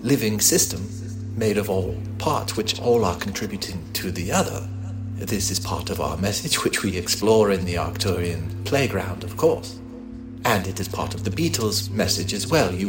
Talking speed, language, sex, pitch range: 180 wpm, English, male, 95-120 Hz